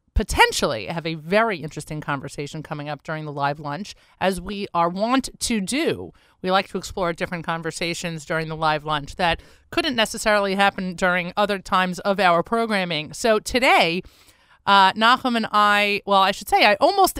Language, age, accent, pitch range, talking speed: English, 30-49, American, 165-220 Hz, 175 wpm